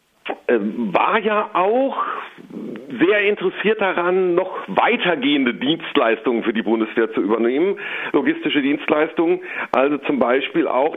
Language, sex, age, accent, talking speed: German, male, 50-69, German, 110 wpm